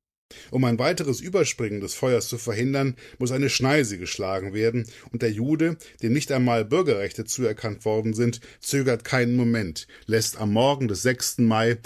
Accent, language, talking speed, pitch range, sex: German, German, 160 wpm, 115-140 Hz, male